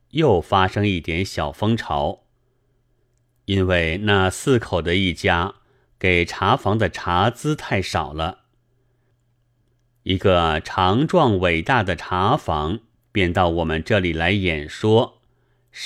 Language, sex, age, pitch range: Chinese, male, 30-49, 90-125 Hz